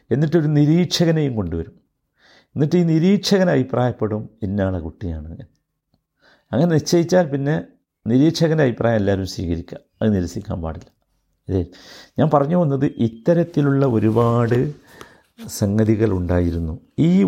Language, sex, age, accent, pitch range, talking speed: Malayalam, male, 50-69, native, 95-130 Hz, 95 wpm